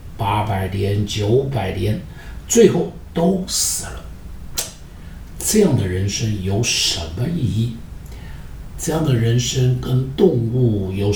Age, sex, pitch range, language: 60-79, male, 95-130 Hz, Chinese